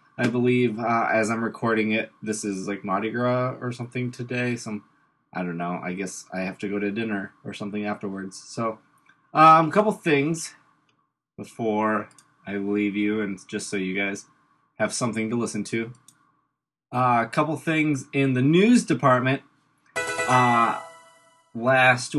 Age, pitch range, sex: 20-39, 105-130 Hz, male